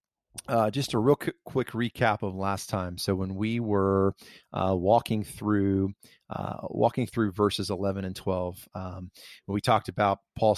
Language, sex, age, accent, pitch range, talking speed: English, male, 30-49, American, 100-115 Hz, 165 wpm